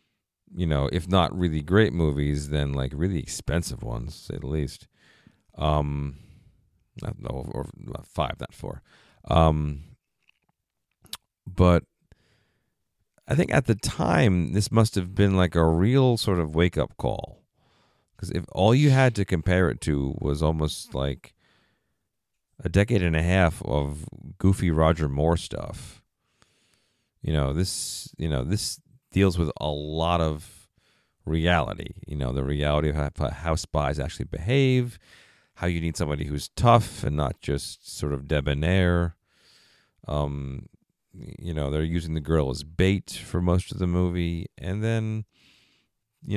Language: English